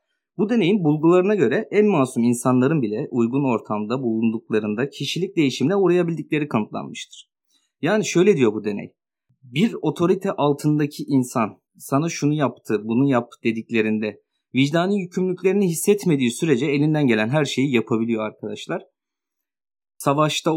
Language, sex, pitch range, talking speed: Turkish, male, 115-170 Hz, 120 wpm